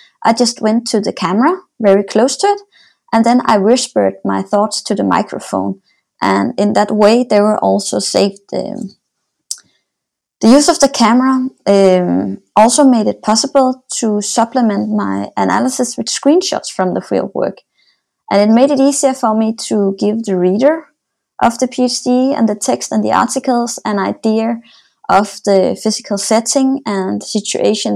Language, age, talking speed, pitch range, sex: English, 20-39, 160 wpm, 200-260 Hz, female